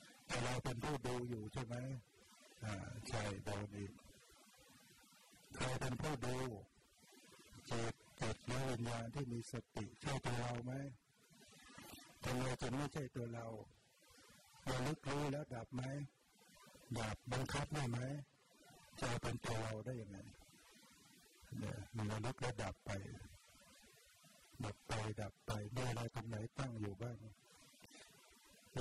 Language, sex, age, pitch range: Thai, male, 60-79, 110-130 Hz